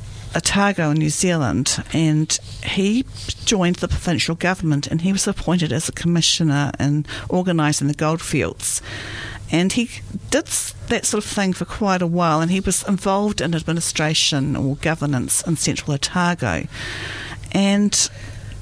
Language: English